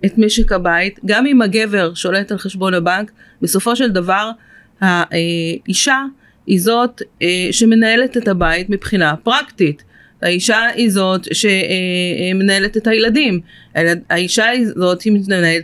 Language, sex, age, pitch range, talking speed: Hebrew, female, 30-49, 180-230 Hz, 120 wpm